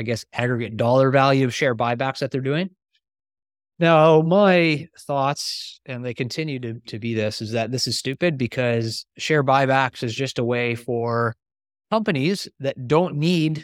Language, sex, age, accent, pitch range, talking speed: English, male, 20-39, American, 125-160 Hz, 165 wpm